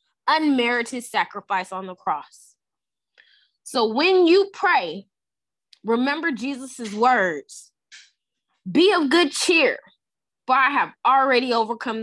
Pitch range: 235-320 Hz